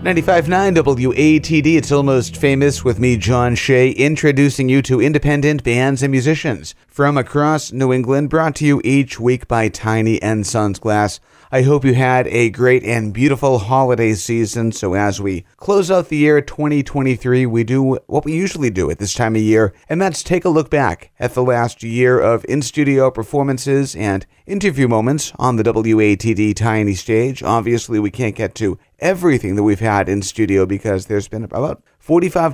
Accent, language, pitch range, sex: American, English, 110-145 Hz, male